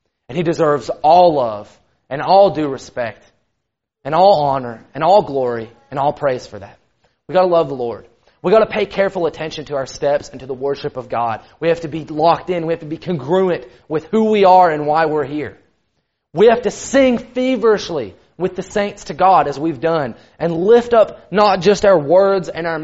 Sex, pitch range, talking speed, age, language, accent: male, 130-185 Hz, 215 wpm, 30-49, English, American